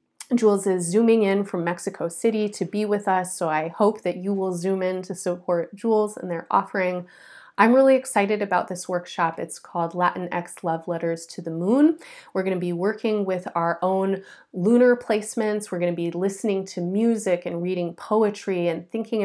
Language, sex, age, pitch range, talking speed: English, female, 30-49, 170-200 Hz, 195 wpm